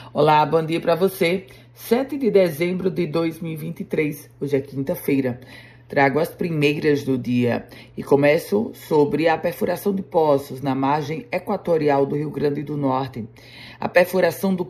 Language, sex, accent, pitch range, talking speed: Portuguese, female, Brazilian, 140-180 Hz, 145 wpm